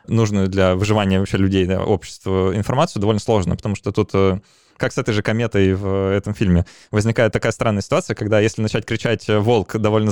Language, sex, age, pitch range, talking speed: Russian, male, 20-39, 100-115 Hz, 185 wpm